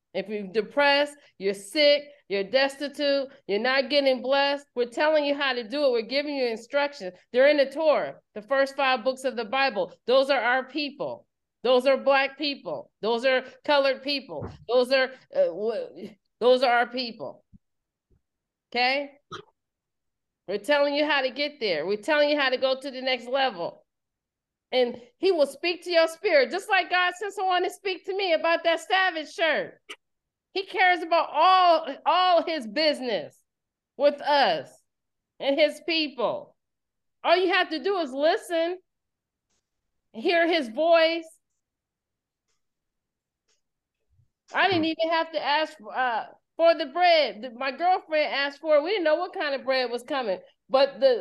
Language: English